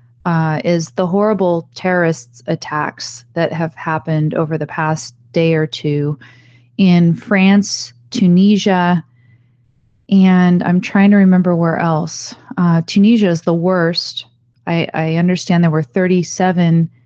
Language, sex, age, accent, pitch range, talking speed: English, female, 30-49, American, 150-185 Hz, 125 wpm